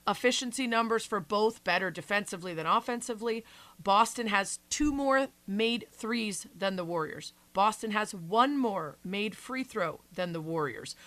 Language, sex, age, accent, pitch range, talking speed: English, female, 30-49, American, 185-235 Hz, 145 wpm